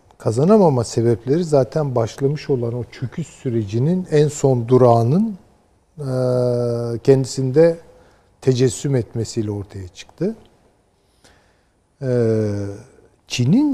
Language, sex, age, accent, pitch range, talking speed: Turkish, male, 60-79, native, 105-150 Hz, 75 wpm